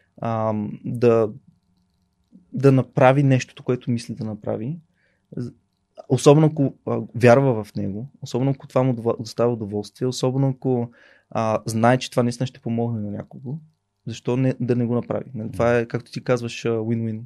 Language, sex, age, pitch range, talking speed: Bulgarian, male, 20-39, 115-135 Hz, 145 wpm